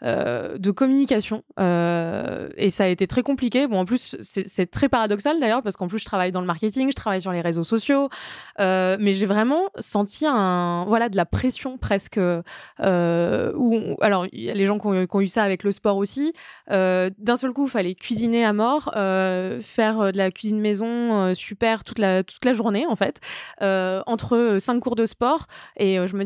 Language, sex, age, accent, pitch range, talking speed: French, female, 20-39, French, 190-245 Hz, 210 wpm